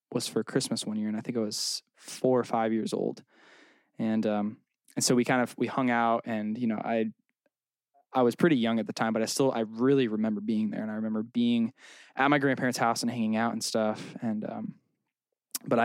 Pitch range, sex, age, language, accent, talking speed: 110-125 Hz, male, 10-29, English, American, 225 wpm